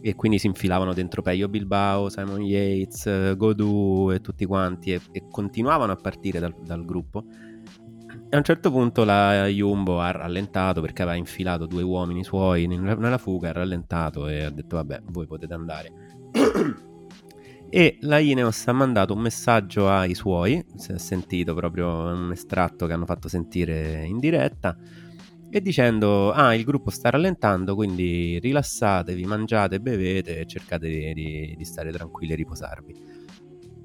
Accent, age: native, 30-49